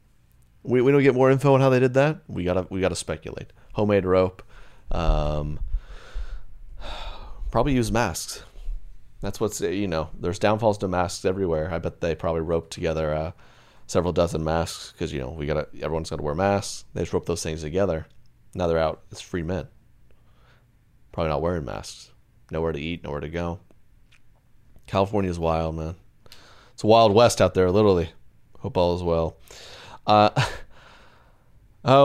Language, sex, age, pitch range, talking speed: English, male, 30-49, 80-110 Hz, 165 wpm